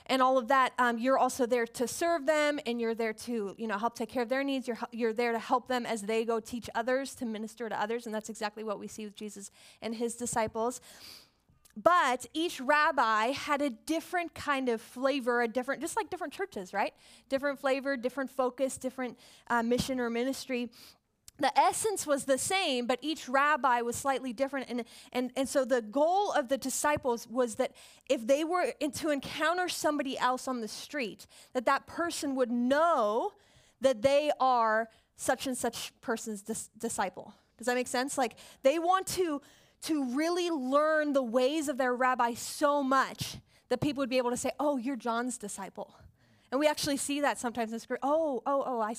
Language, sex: English, female